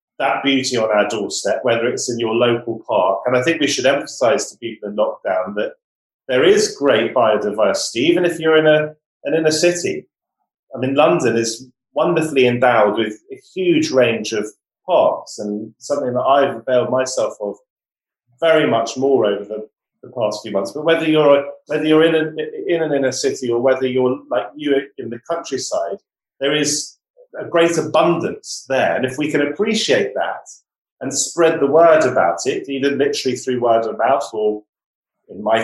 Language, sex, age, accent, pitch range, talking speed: English, male, 30-49, British, 115-155 Hz, 180 wpm